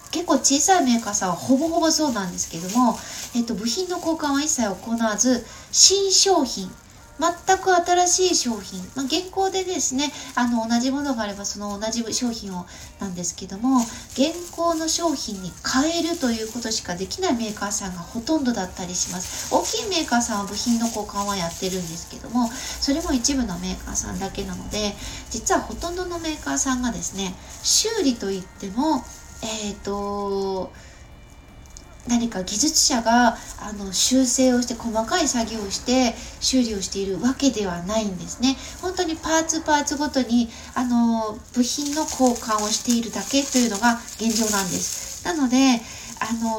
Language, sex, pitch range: Japanese, female, 205-295 Hz